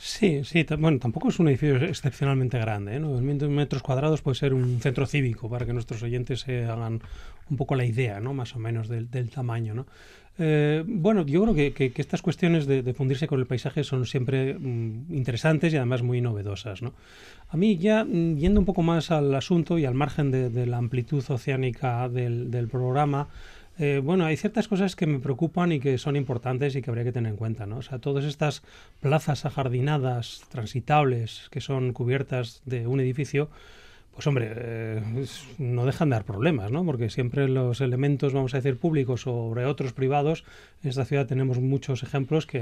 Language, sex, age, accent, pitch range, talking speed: Spanish, male, 30-49, Spanish, 125-145 Hz, 200 wpm